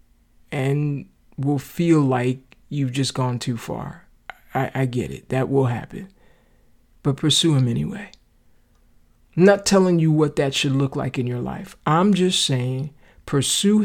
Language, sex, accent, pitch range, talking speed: English, male, American, 135-170 Hz, 155 wpm